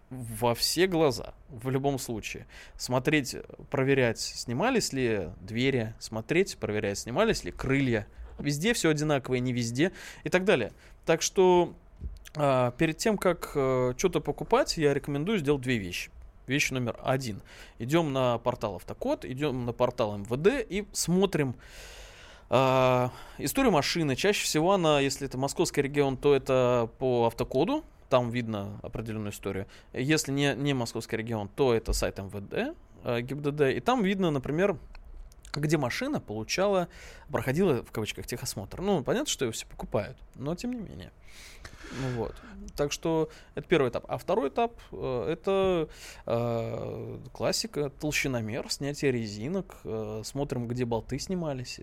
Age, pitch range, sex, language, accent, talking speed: 20-39, 115-155 Hz, male, Russian, native, 140 wpm